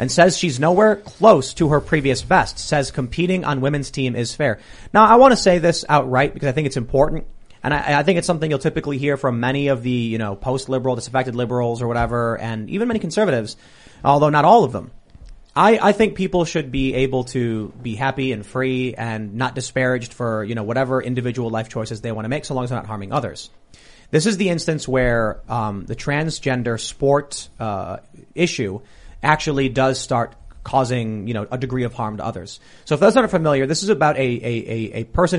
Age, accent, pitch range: 30-49, American, 115-150 Hz